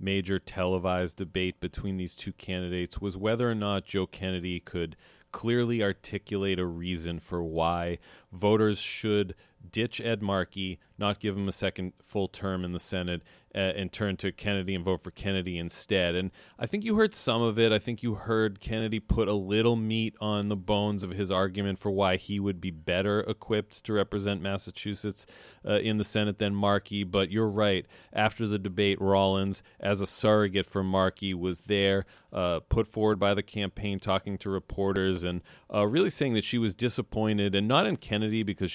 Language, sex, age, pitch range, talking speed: English, male, 40-59, 90-105 Hz, 185 wpm